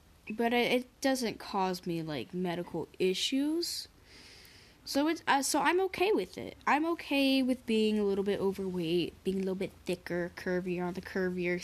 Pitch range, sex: 190-255 Hz, female